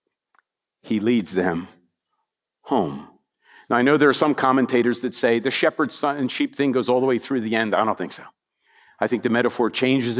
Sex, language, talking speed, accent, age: male, English, 205 wpm, American, 50-69